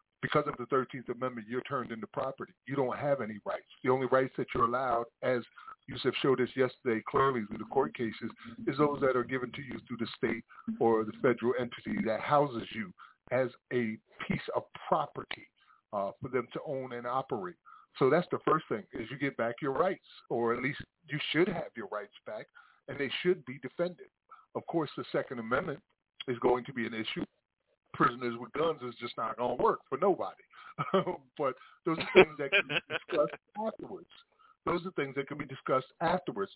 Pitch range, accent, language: 125-185 Hz, American, English